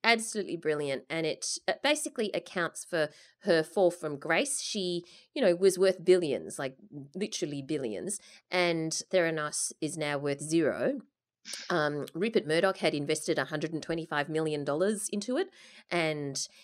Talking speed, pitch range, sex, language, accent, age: 135 wpm, 145-185 Hz, female, English, Australian, 30-49